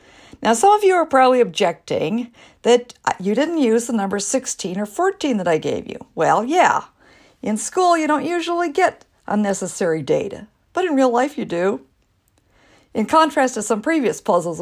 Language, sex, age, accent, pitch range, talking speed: English, female, 50-69, American, 195-280 Hz, 170 wpm